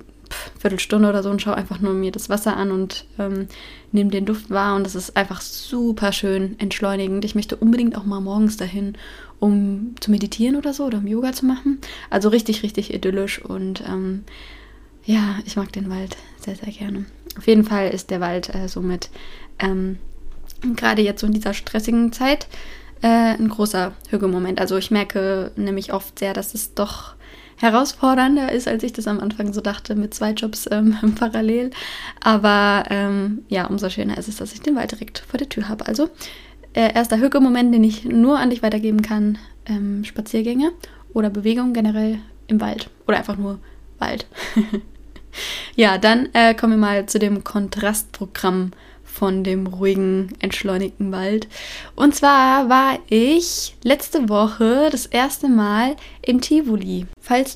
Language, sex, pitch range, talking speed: German, female, 200-240 Hz, 170 wpm